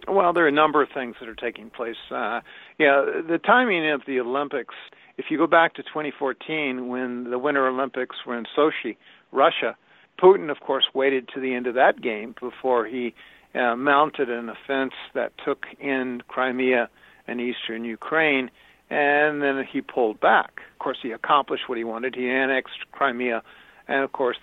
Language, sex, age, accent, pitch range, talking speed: English, male, 60-79, American, 125-145 Hz, 175 wpm